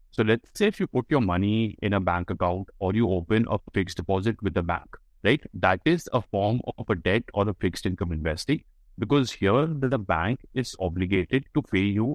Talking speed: 210 wpm